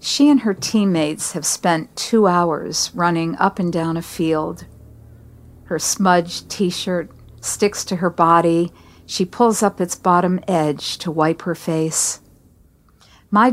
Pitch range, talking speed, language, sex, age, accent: 160-195 Hz, 140 wpm, English, female, 50-69, American